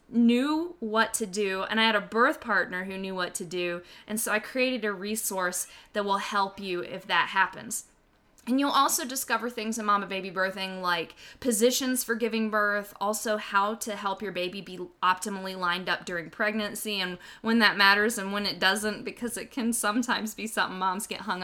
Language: English